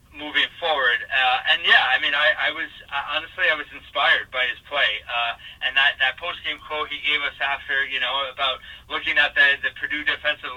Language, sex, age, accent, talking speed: English, male, 30-49, American, 205 wpm